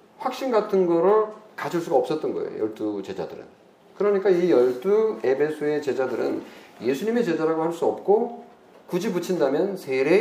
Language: Korean